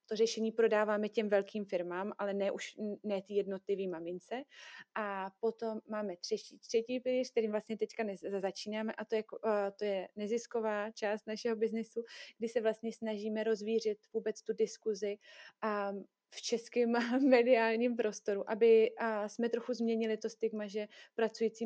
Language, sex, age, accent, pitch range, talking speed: Czech, female, 30-49, native, 205-225 Hz, 150 wpm